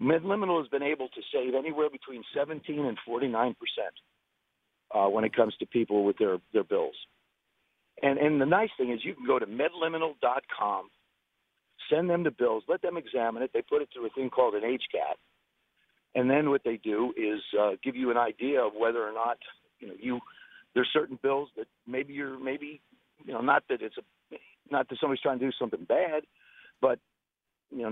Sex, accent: male, American